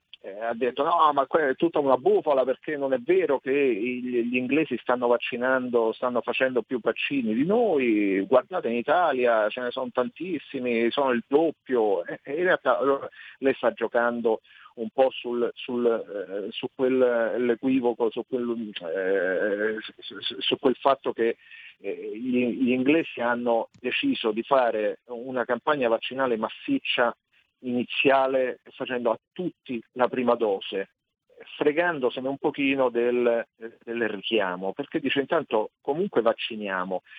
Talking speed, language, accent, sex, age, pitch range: 140 wpm, Italian, native, male, 40-59, 120-140 Hz